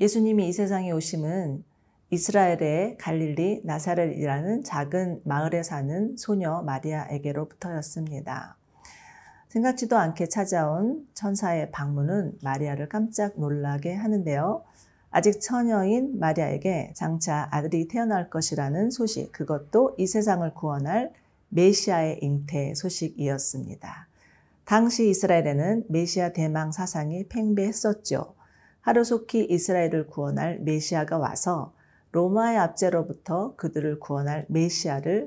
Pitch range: 155-205 Hz